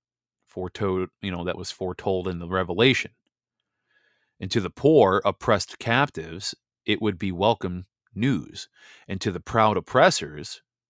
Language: English